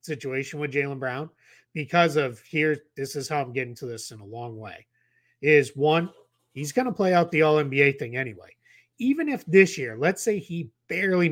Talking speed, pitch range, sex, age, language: 200 wpm, 130-175 Hz, male, 30-49, English